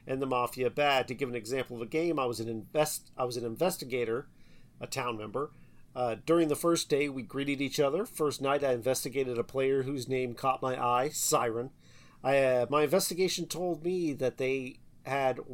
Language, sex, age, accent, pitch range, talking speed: English, male, 40-59, American, 130-165 Hz, 200 wpm